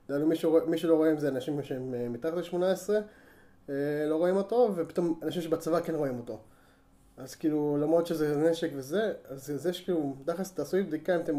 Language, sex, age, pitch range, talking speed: Hebrew, male, 20-39, 135-165 Hz, 180 wpm